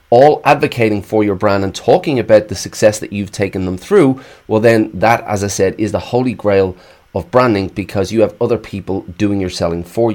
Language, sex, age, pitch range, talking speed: English, male, 30-49, 95-115 Hz, 215 wpm